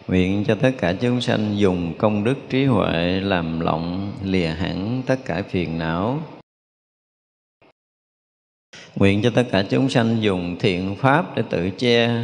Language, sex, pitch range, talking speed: Vietnamese, male, 95-125 Hz, 150 wpm